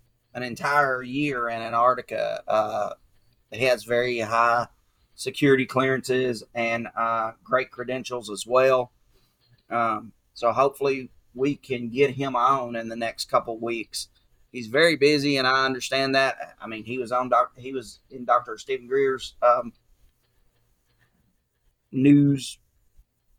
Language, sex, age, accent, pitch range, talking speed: English, male, 30-49, American, 115-140 Hz, 130 wpm